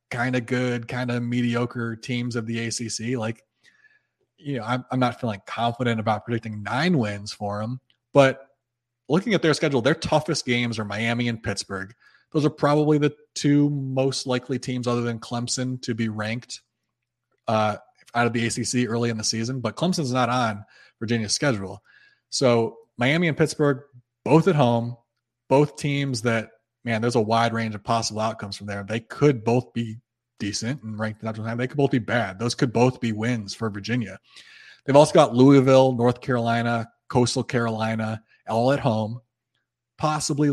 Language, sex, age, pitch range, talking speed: English, male, 20-39, 115-130 Hz, 175 wpm